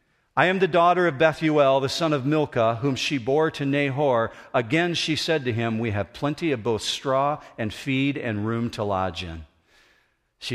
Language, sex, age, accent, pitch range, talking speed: English, male, 50-69, American, 115-170 Hz, 195 wpm